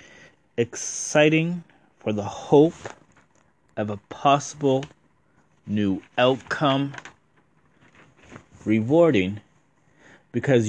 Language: English